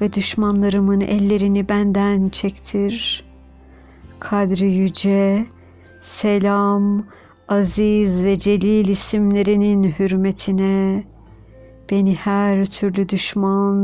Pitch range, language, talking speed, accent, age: 175-210 Hz, Turkish, 75 wpm, native, 60-79